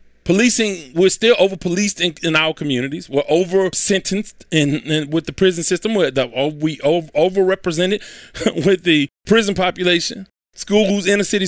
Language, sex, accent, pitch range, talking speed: English, male, American, 155-220 Hz, 115 wpm